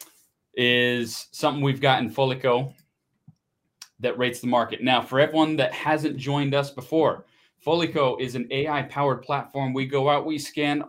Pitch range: 115-140 Hz